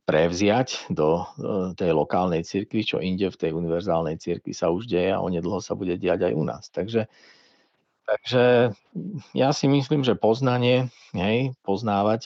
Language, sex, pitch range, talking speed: Slovak, male, 90-110 Hz, 150 wpm